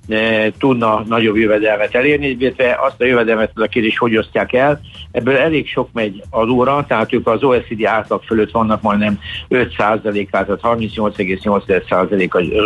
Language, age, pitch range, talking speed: Hungarian, 60-79, 105-125 Hz, 155 wpm